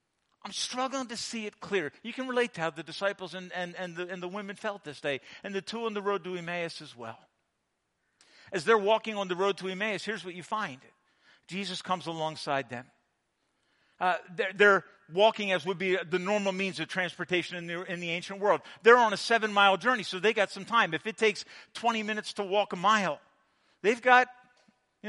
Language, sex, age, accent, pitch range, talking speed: English, male, 50-69, American, 175-230 Hz, 215 wpm